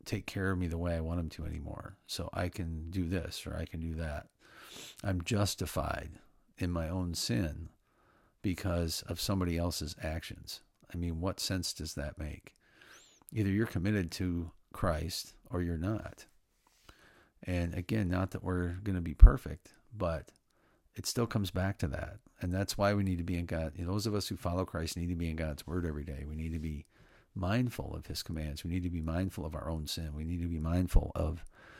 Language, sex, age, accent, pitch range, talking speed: English, male, 50-69, American, 85-95 Hz, 205 wpm